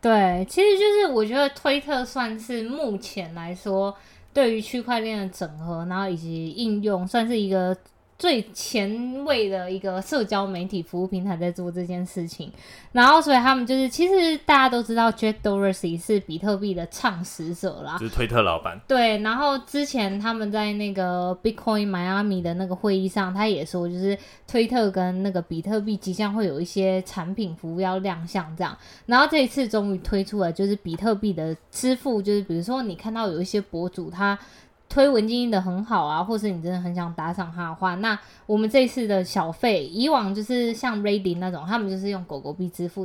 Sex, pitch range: female, 180-225 Hz